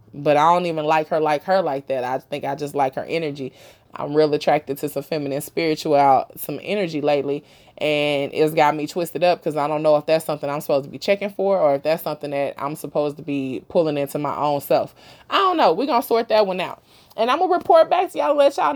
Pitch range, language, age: 145-185 Hz, English, 20-39